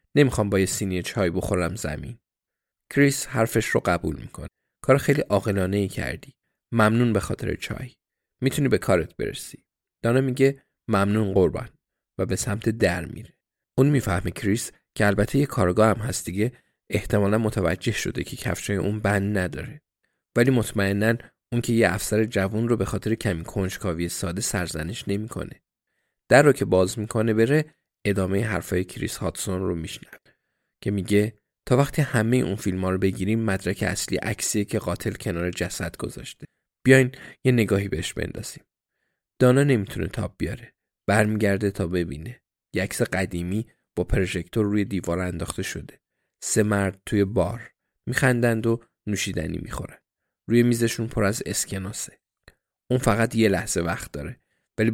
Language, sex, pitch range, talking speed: Persian, male, 95-115 Hz, 150 wpm